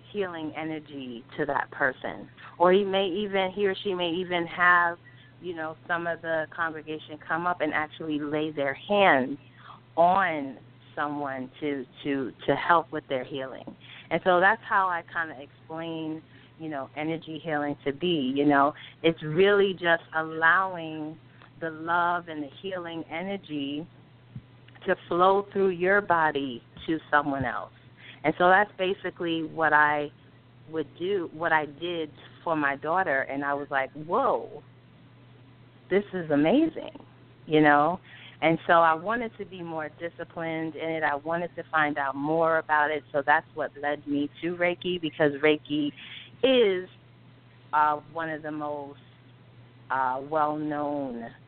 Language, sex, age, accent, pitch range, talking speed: English, female, 30-49, American, 140-170 Hz, 150 wpm